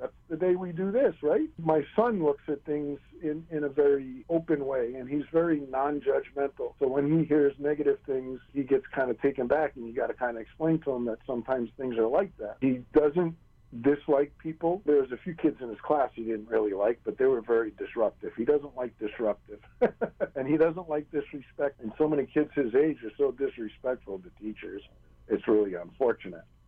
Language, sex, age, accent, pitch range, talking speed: English, male, 50-69, American, 130-160 Hz, 205 wpm